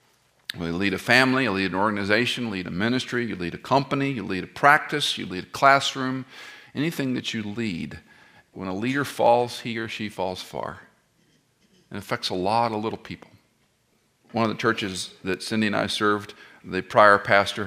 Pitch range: 90-115 Hz